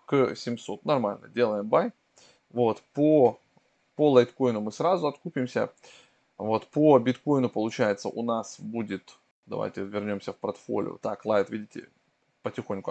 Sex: male